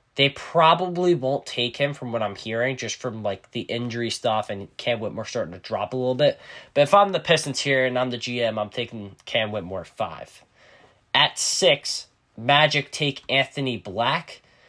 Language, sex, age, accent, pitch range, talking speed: English, male, 10-29, American, 115-140 Hz, 190 wpm